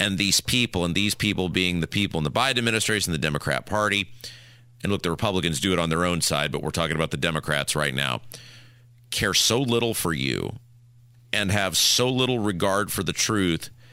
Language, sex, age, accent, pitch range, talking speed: English, male, 40-59, American, 95-120 Hz, 205 wpm